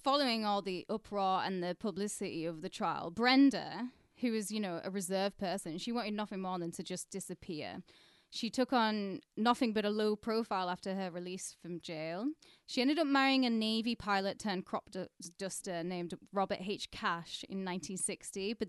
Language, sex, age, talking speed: English, female, 10-29, 185 wpm